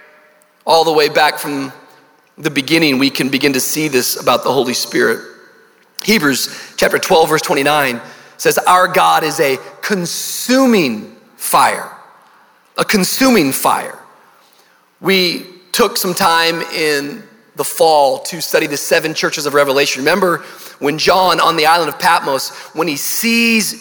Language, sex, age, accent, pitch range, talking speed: English, male, 40-59, American, 150-215 Hz, 145 wpm